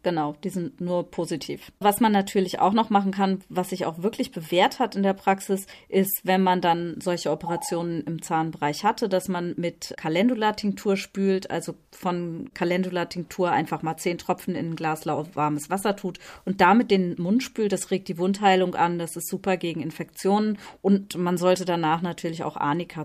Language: German